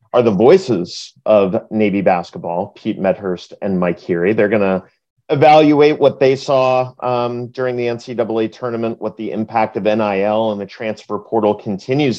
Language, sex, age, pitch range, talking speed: English, male, 40-59, 100-125 Hz, 160 wpm